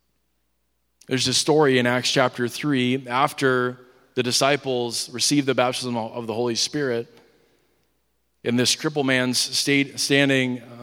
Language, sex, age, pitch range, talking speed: English, male, 20-39, 115-145 Hz, 125 wpm